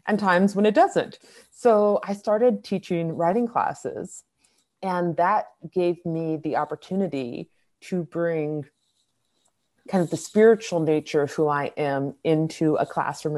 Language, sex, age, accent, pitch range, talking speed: English, female, 30-49, American, 150-195 Hz, 140 wpm